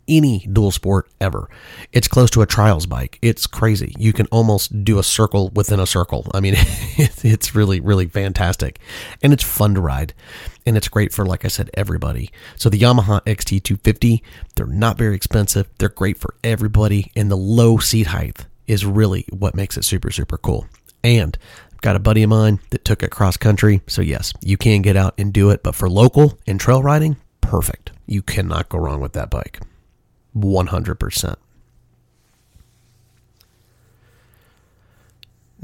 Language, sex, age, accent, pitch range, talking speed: English, male, 30-49, American, 95-115 Hz, 170 wpm